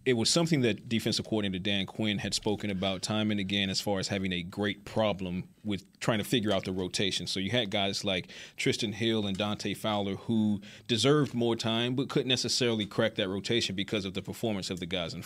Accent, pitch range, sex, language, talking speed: American, 100-115 Hz, male, English, 225 wpm